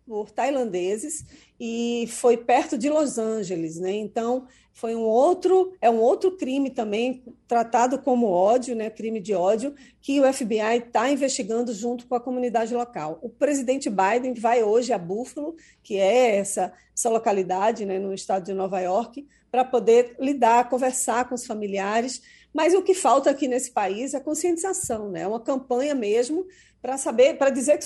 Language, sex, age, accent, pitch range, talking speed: Portuguese, female, 40-59, Brazilian, 225-275 Hz, 165 wpm